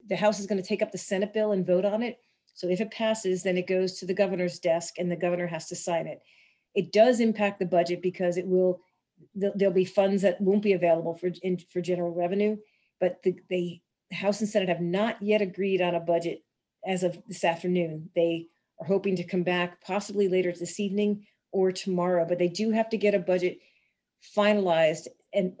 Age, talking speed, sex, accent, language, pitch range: 40-59, 210 wpm, female, American, English, 175-200 Hz